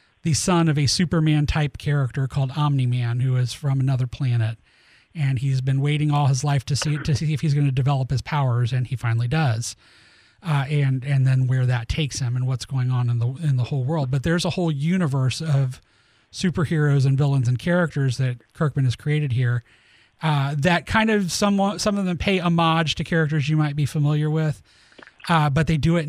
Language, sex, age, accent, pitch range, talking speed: English, male, 30-49, American, 135-160 Hz, 210 wpm